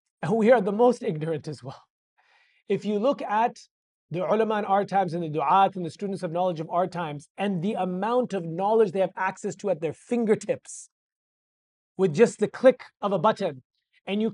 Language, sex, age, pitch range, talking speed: English, male, 30-49, 185-245 Hz, 200 wpm